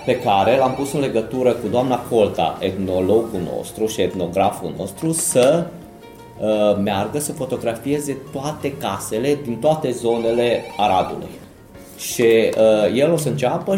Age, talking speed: 30-49, 135 wpm